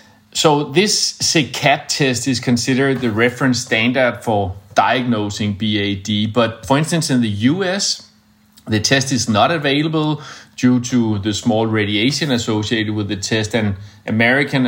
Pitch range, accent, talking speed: 105-125 Hz, Danish, 140 wpm